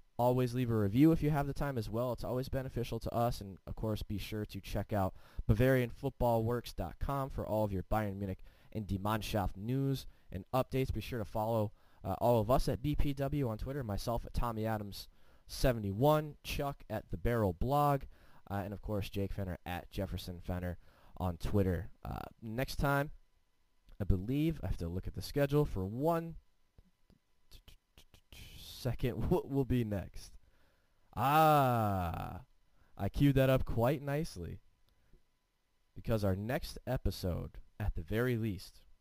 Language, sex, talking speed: English, male, 155 wpm